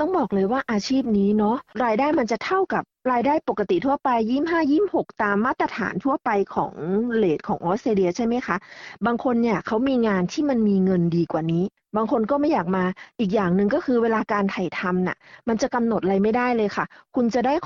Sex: female